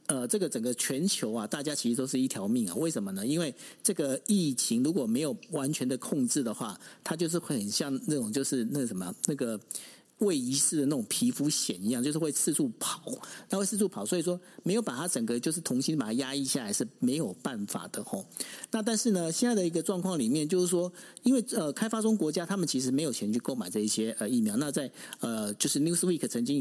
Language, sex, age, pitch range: Chinese, male, 50-69, 135-225 Hz